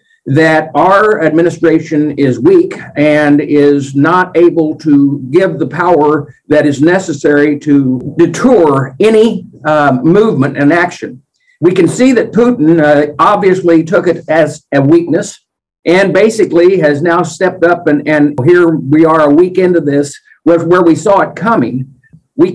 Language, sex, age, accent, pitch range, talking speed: English, male, 60-79, American, 150-190 Hz, 150 wpm